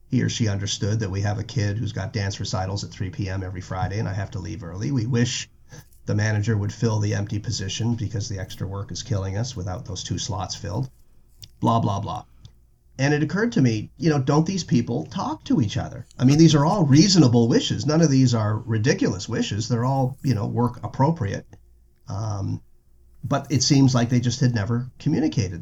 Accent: American